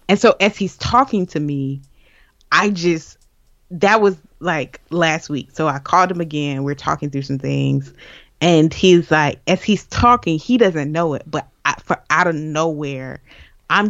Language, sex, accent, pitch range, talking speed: English, female, American, 145-185 Hz, 170 wpm